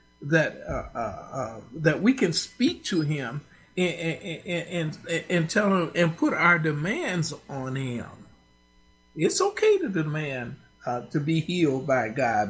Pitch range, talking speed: 145-190 Hz, 155 wpm